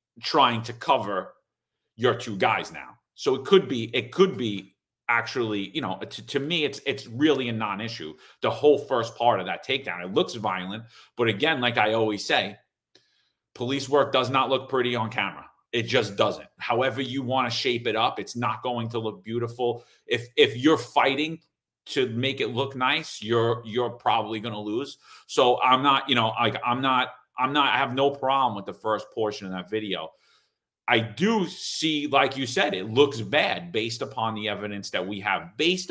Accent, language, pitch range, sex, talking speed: American, English, 110-135 Hz, male, 195 wpm